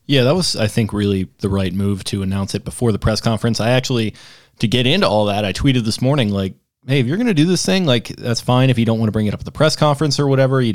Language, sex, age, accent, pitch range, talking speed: English, male, 20-39, American, 100-125 Hz, 300 wpm